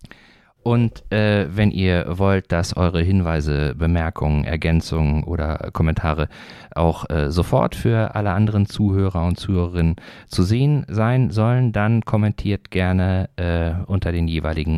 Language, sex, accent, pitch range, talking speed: German, male, German, 80-100 Hz, 130 wpm